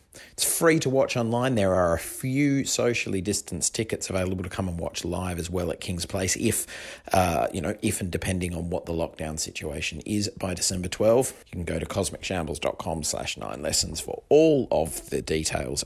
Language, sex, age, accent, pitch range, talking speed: English, male, 30-49, Australian, 85-110 Hz, 195 wpm